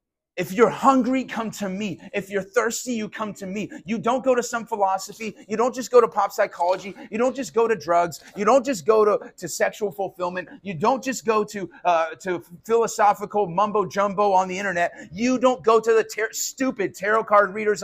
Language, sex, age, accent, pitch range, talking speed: English, male, 30-49, American, 145-230 Hz, 200 wpm